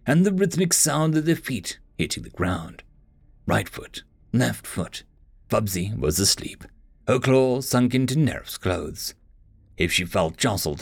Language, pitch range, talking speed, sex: English, 100-155 Hz, 150 wpm, male